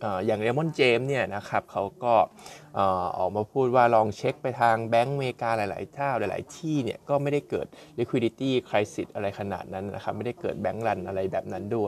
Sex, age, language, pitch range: male, 20-39, Thai, 110-135 Hz